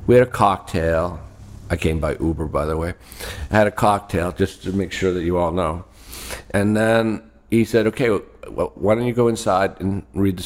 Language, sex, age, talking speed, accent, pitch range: English, male, 50-69, 210 wpm, American, 90-115 Hz